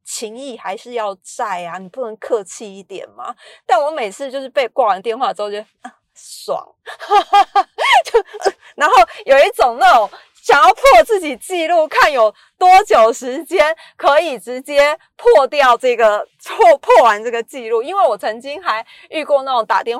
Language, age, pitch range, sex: Chinese, 30-49, 210-320 Hz, female